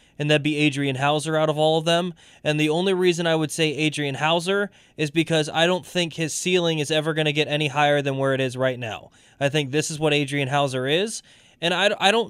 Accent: American